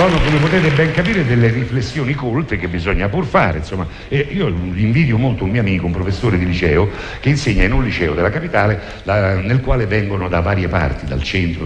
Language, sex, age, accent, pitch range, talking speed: Italian, male, 60-79, native, 85-115 Hz, 190 wpm